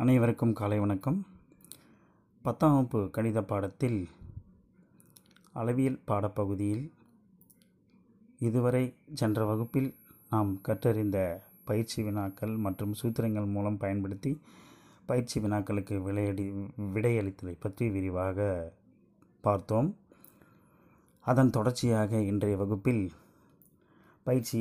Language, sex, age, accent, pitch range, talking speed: Tamil, male, 20-39, native, 100-120 Hz, 80 wpm